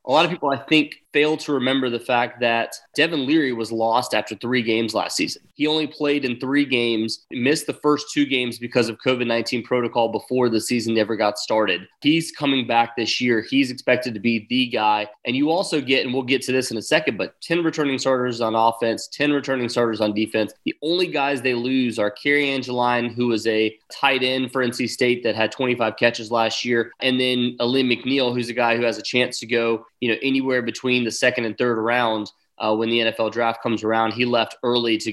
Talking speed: 225 wpm